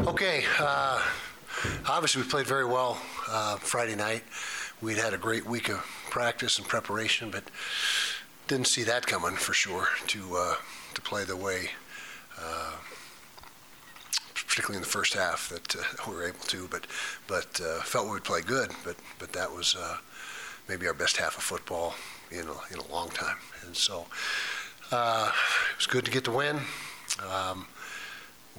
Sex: male